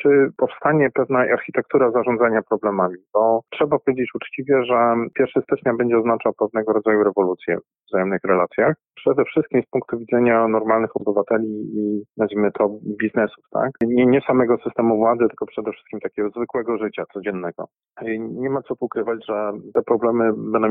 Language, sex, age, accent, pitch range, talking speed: Polish, male, 40-59, native, 105-120 Hz, 155 wpm